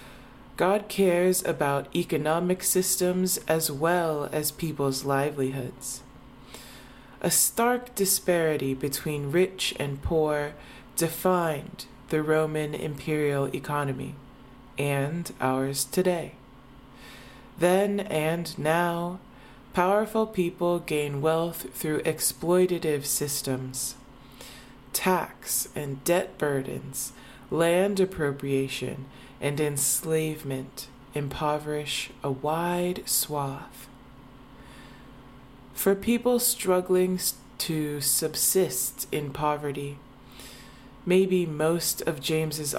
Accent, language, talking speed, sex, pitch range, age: American, English, 80 wpm, female, 135-175 Hz, 20-39